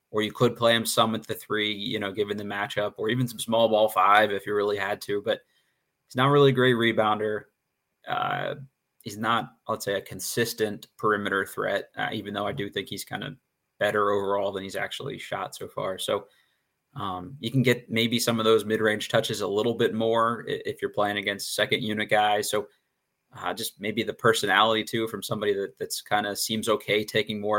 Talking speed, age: 210 wpm, 20-39